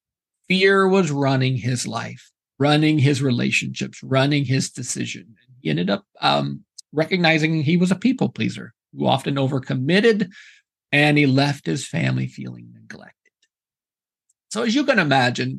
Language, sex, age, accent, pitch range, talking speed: English, male, 50-69, American, 130-185 Hz, 140 wpm